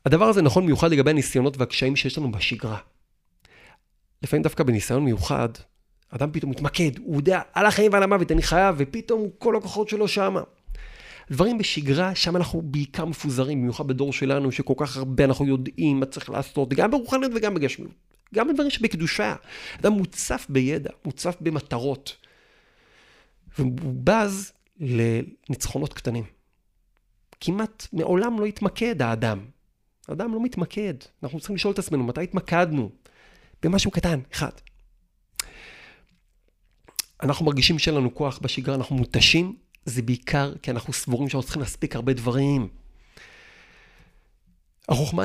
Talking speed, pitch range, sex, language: 135 wpm, 125-175 Hz, male, Hebrew